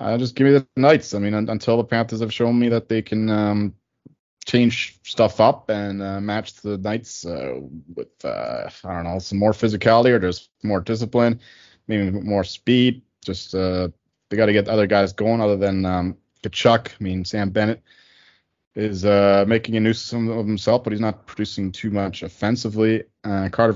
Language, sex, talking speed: English, male, 195 wpm